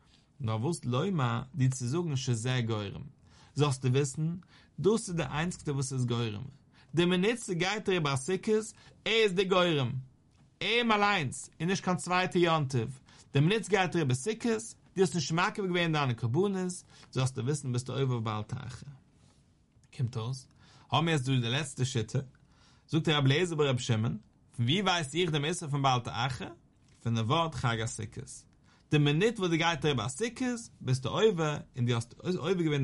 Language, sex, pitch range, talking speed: English, male, 125-170 Hz, 155 wpm